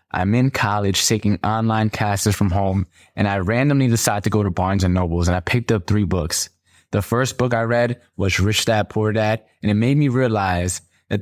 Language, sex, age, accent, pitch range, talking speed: English, male, 20-39, American, 100-135 Hz, 215 wpm